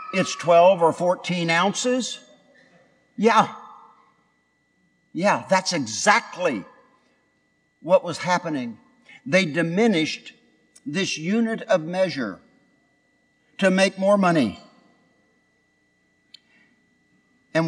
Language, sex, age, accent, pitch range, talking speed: English, male, 60-79, American, 145-230 Hz, 80 wpm